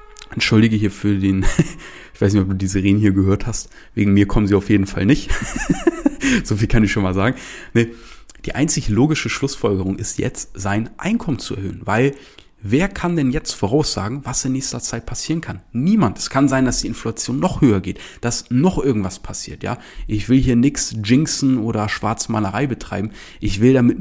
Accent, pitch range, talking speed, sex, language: German, 105-135 Hz, 195 wpm, male, German